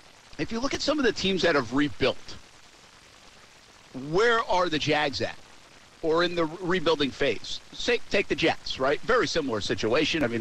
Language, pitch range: English, 120-150 Hz